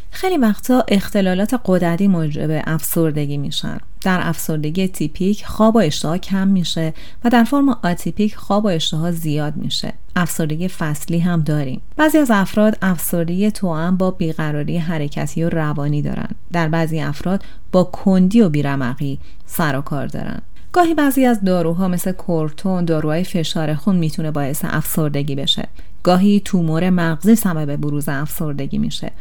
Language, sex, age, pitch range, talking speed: Persian, female, 30-49, 155-200 Hz, 140 wpm